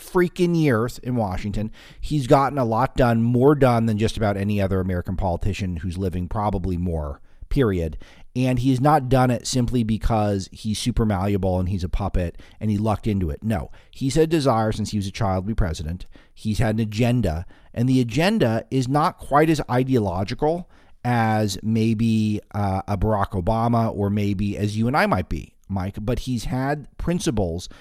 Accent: American